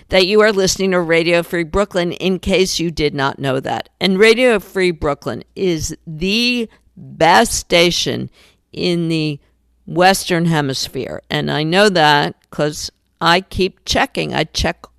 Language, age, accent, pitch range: English, 50-69, American, 150-190 Hz